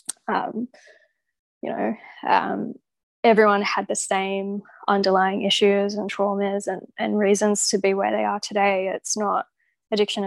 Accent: Australian